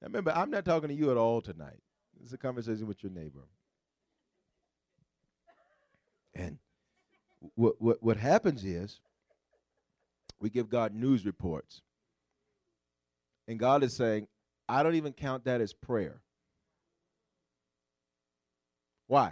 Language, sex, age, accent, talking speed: English, male, 40-59, American, 125 wpm